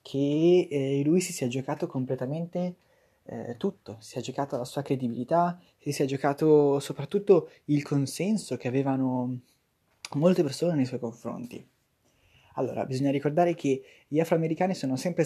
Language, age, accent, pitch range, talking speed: Italian, 20-39, native, 130-160 Hz, 140 wpm